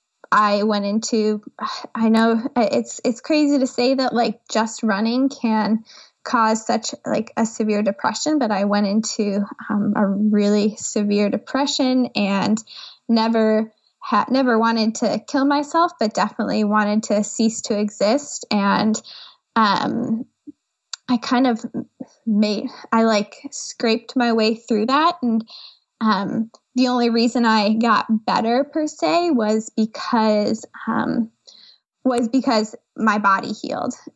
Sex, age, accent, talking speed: female, 10-29, American, 135 wpm